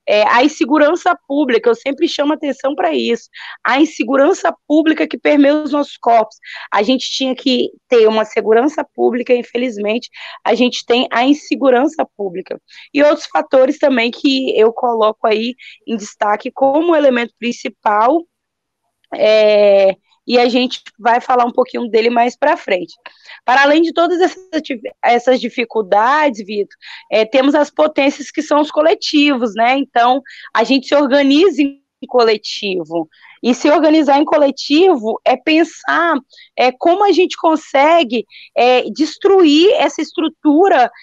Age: 20-39